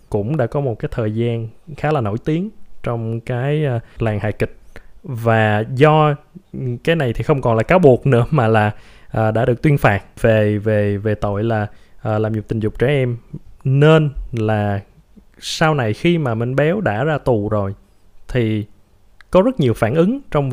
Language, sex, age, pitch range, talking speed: Vietnamese, male, 20-39, 105-145 Hz, 185 wpm